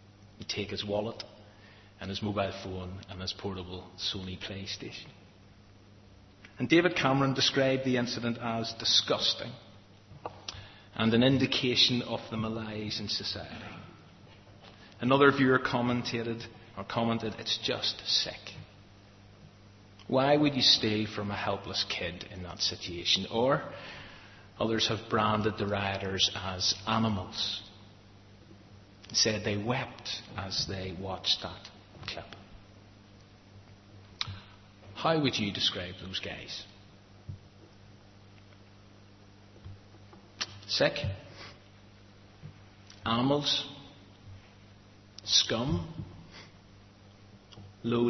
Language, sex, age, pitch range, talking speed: English, male, 40-59, 100-110 Hz, 90 wpm